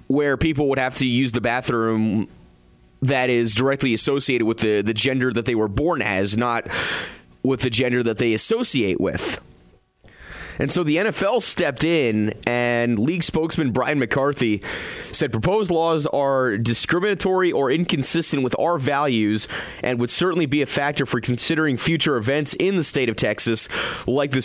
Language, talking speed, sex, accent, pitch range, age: English, 160 wpm, male, American, 115-155 Hz, 30-49